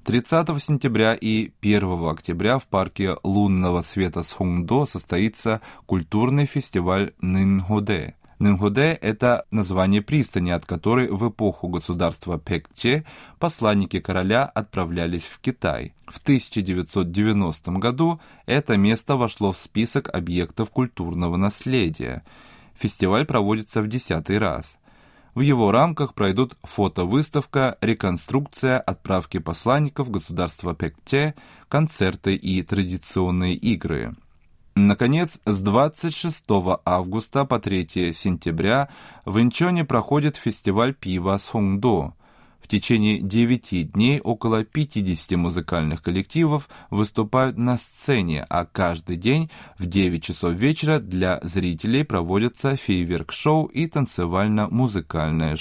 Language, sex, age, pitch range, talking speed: Russian, male, 20-39, 90-130 Hz, 105 wpm